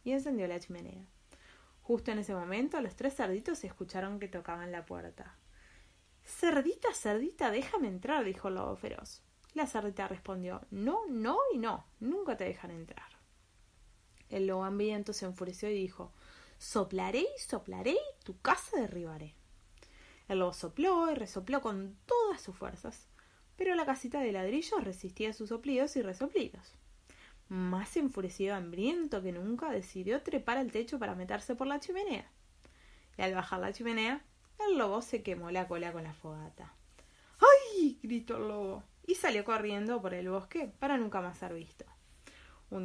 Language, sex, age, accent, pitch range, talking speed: Spanish, female, 20-39, Argentinian, 190-275 Hz, 155 wpm